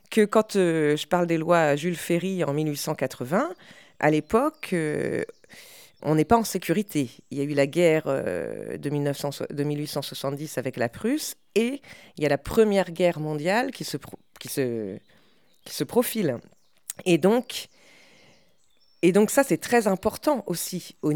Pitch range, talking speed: 145-215 Hz, 170 wpm